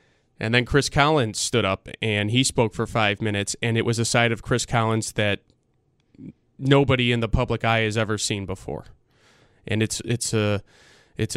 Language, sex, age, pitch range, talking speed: English, male, 20-39, 105-120 Hz, 185 wpm